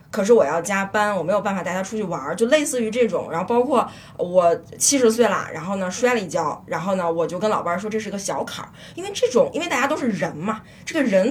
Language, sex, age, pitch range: Chinese, female, 20-39, 185-260 Hz